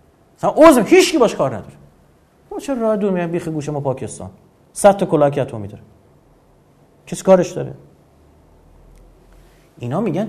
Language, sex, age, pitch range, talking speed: Persian, male, 30-49, 105-155 Hz, 140 wpm